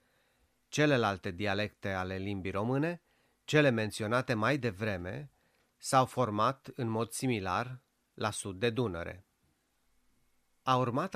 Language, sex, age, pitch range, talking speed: Romanian, male, 30-49, 105-125 Hz, 110 wpm